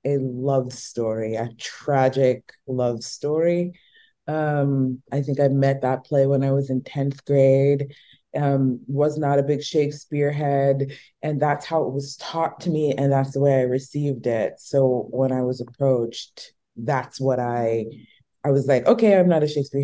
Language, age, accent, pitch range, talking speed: English, 30-49, American, 130-170 Hz, 175 wpm